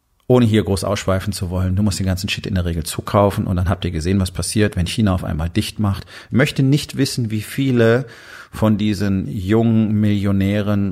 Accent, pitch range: German, 95-115 Hz